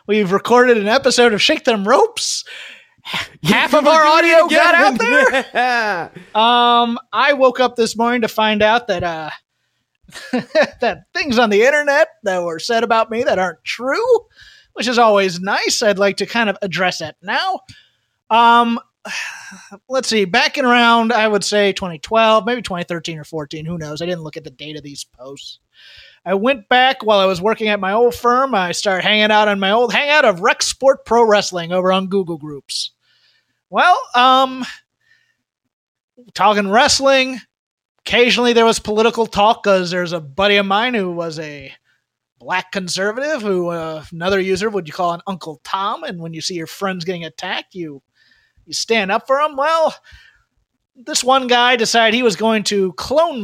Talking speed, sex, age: 175 wpm, male, 30-49